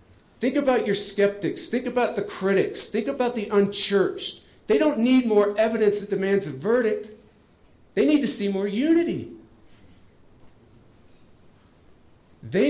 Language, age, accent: English, 50-69, American